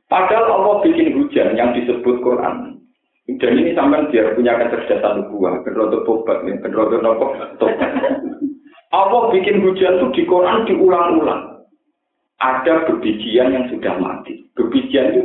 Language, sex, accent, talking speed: Indonesian, male, native, 130 wpm